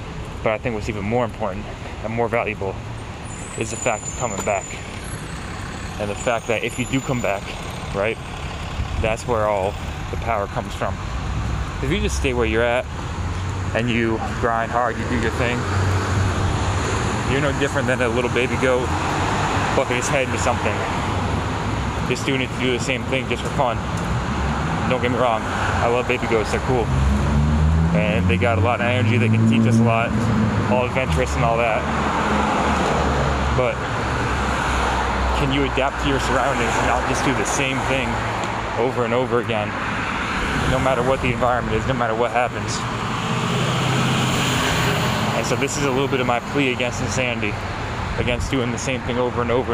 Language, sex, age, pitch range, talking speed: English, male, 20-39, 95-125 Hz, 180 wpm